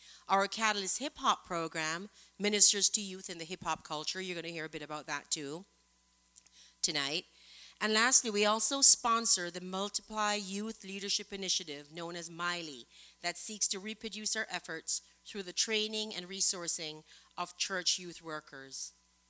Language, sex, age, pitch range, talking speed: English, female, 40-59, 160-205 Hz, 150 wpm